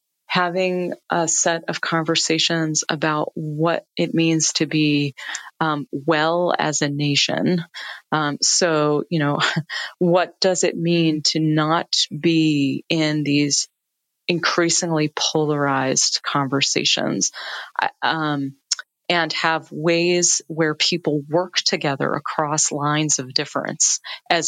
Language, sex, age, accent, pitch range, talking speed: English, female, 30-49, American, 145-170 Hz, 110 wpm